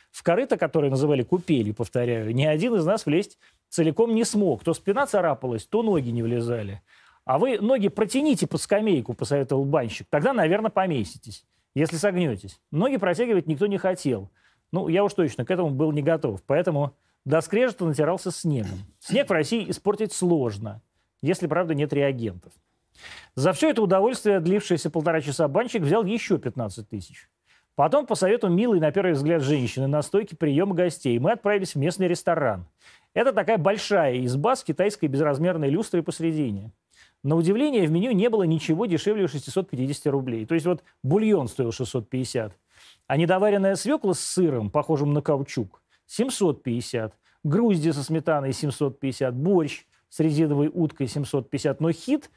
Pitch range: 135-190 Hz